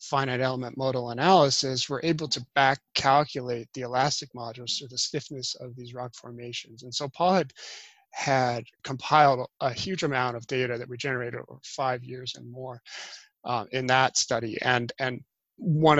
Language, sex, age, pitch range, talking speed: English, male, 30-49, 125-150 Hz, 170 wpm